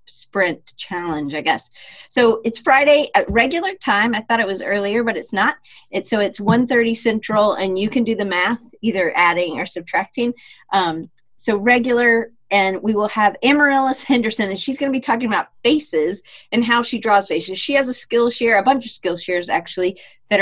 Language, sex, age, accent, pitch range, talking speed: English, female, 30-49, American, 190-250 Hz, 200 wpm